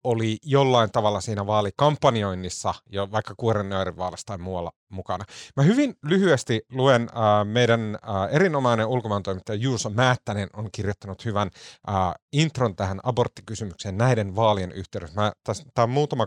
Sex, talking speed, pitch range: male, 140 wpm, 105-140 Hz